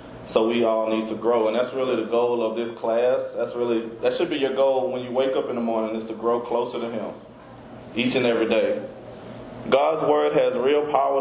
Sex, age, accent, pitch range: male, 30-49, American, 115-135 Hz